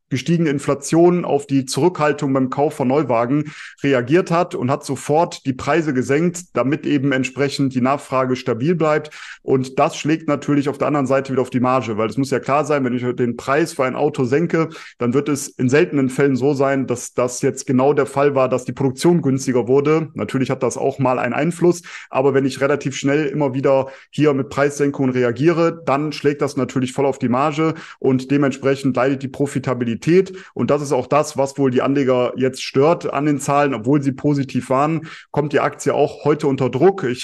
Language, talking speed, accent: German, 205 wpm, German